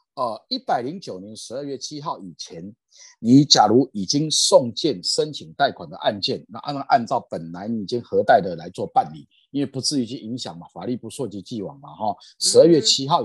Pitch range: 115-170 Hz